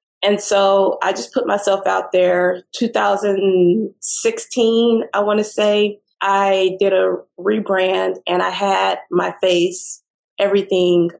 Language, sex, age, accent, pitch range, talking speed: English, female, 20-39, American, 185-230 Hz, 125 wpm